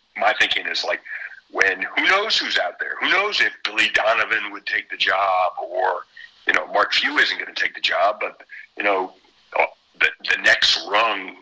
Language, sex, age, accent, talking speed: English, male, 50-69, American, 195 wpm